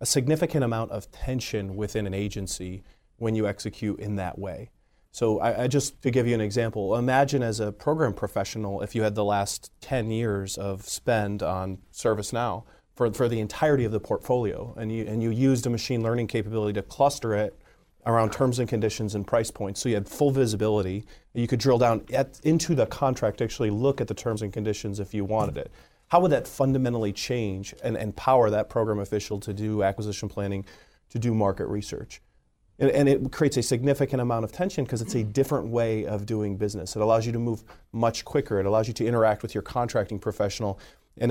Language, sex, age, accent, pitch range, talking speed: English, male, 30-49, American, 105-125 Hz, 205 wpm